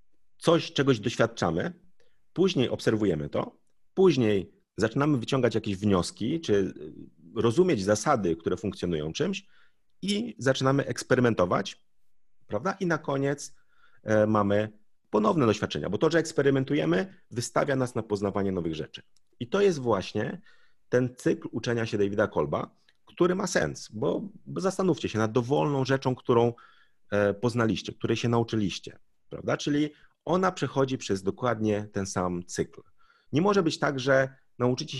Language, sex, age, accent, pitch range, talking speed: Polish, male, 40-59, native, 105-145 Hz, 130 wpm